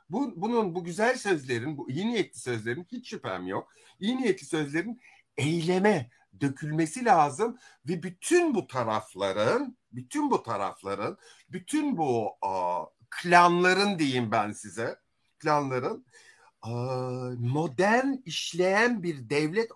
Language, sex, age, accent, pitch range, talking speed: Turkish, male, 50-69, native, 125-205 Hz, 110 wpm